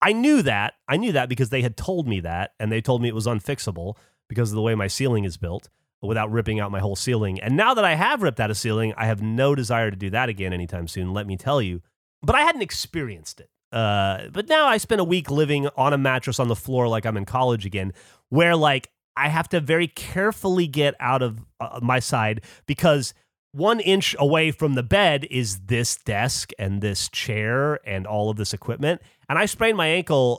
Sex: male